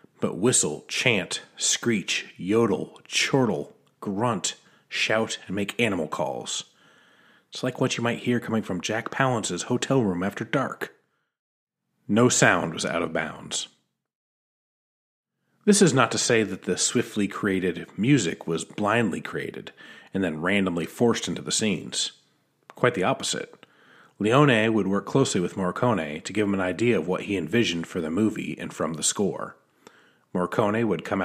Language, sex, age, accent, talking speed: English, male, 30-49, American, 155 wpm